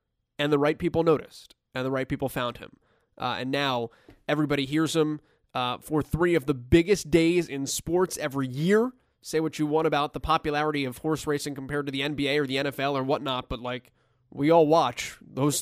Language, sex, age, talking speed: English, male, 20-39, 205 wpm